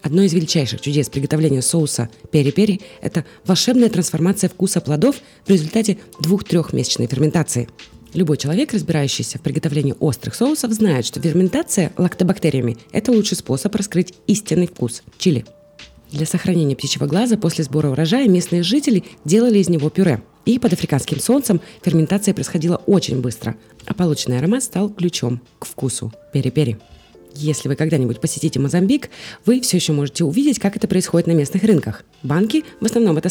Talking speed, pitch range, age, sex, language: 150 wpm, 140-195 Hz, 20-39, female, Russian